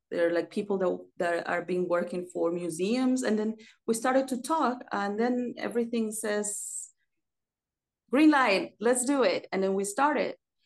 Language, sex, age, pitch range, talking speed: English, female, 30-49, 190-240 Hz, 165 wpm